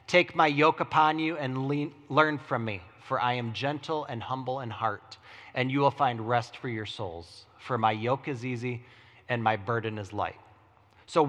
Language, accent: English, American